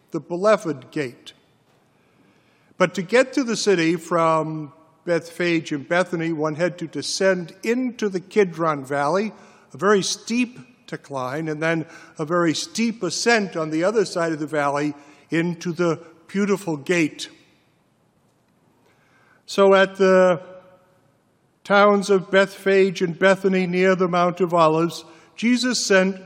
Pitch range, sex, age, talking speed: 165-200 Hz, male, 50-69, 130 wpm